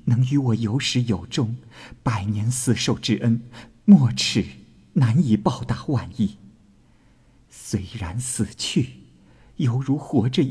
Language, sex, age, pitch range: Chinese, male, 50-69, 105-125 Hz